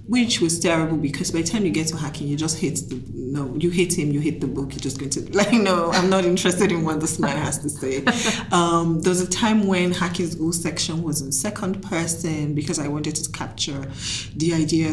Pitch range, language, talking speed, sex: 150-180 Hz, Finnish, 235 wpm, female